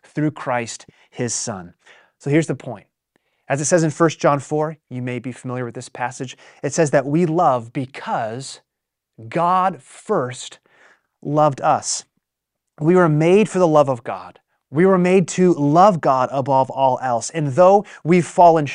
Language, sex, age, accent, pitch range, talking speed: English, male, 30-49, American, 130-165 Hz, 170 wpm